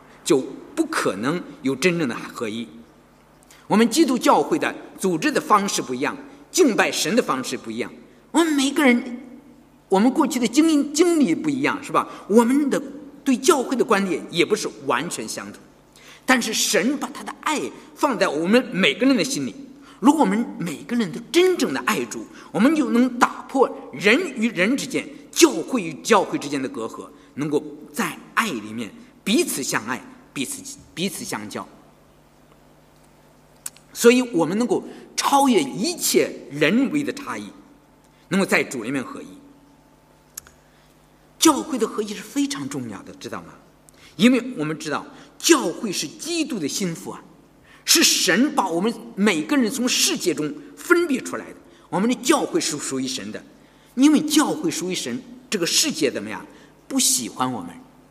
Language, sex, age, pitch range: English, male, 50-69, 195-285 Hz